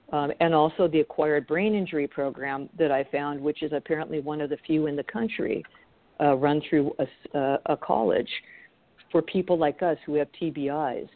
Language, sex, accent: English, female, American